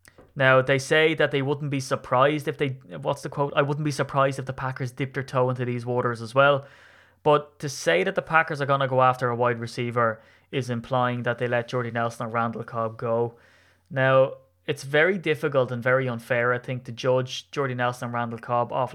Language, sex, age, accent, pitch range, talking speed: English, male, 20-39, Irish, 115-130 Hz, 220 wpm